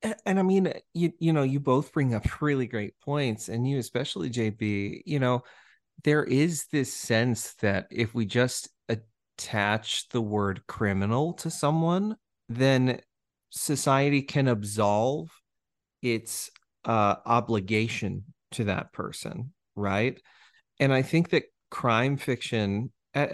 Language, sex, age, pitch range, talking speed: English, male, 30-49, 105-140 Hz, 130 wpm